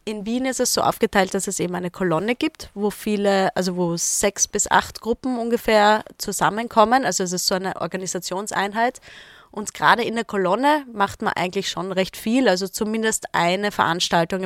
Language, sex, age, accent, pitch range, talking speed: German, female, 20-39, German, 185-230 Hz, 180 wpm